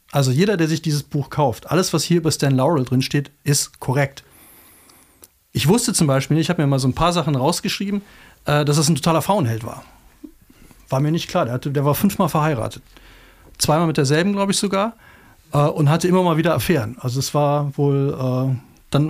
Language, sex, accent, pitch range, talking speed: German, male, German, 135-170 Hz, 200 wpm